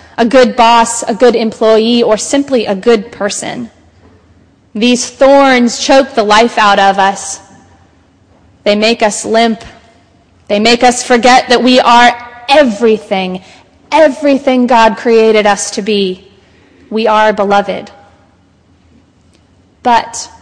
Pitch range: 205-275 Hz